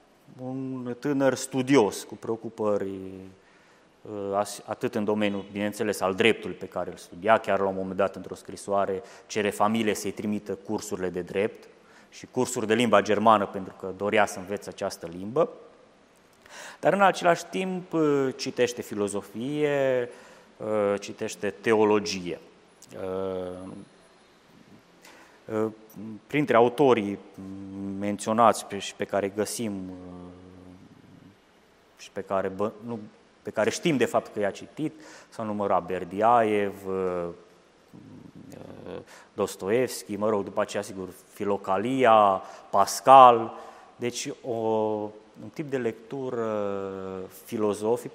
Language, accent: Romanian, native